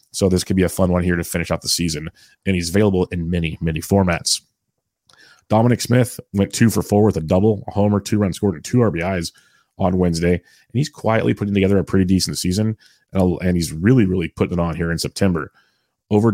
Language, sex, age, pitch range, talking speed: English, male, 30-49, 90-105 Hz, 215 wpm